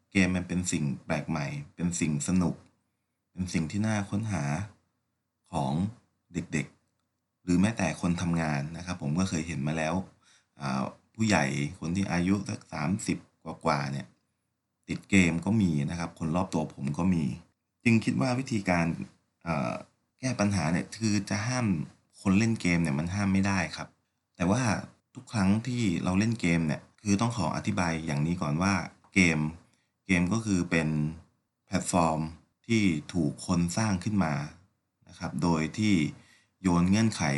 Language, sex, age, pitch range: Thai, male, 30-49, 80-105 Hz